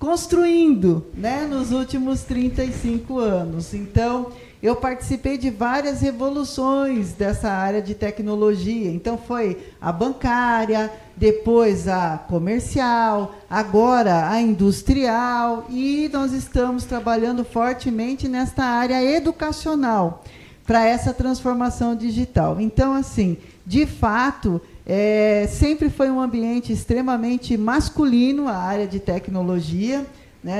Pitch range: 210-265 Hz